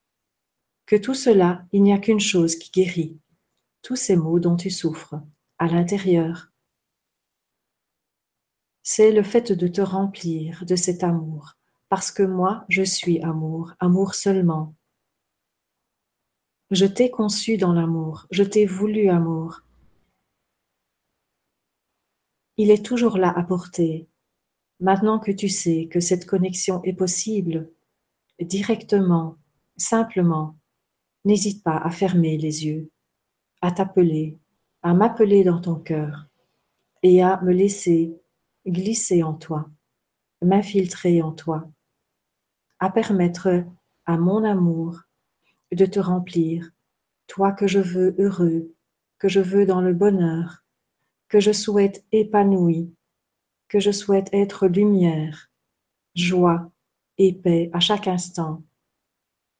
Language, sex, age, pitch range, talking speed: French, female, 40-59, 165-195 Hz, 120 wpm